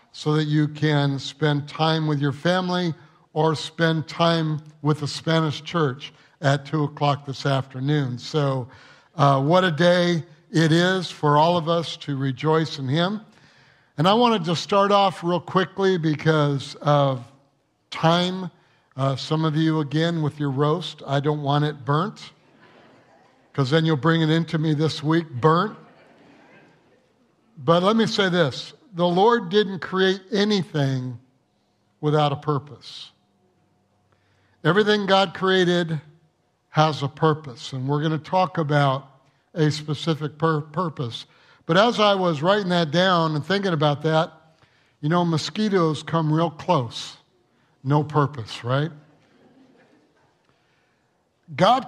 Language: English